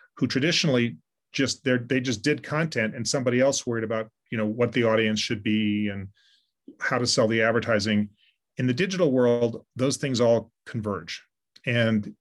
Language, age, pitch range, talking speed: English, 30-49, 110-125 Hz, 165 wpm